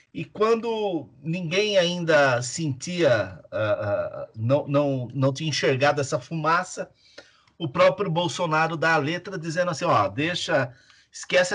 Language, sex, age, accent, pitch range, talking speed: Portuguese, male, 50-69, Brazilian, 130-185 Hz, 130 wpm